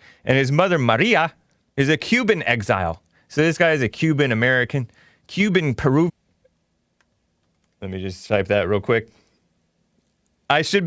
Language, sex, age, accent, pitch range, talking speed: English, male, 30-49, American, 105-165 Hz, 135 wpm